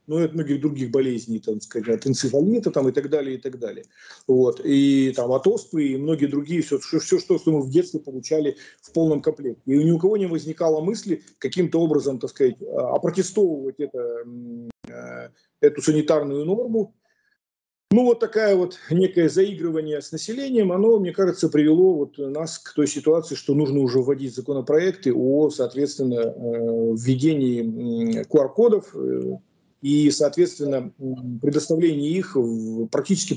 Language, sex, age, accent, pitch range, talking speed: Russian, male, 40-59, native, 135-180 Hz, 145 wpm